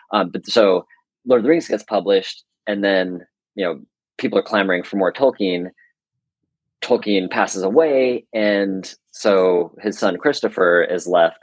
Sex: male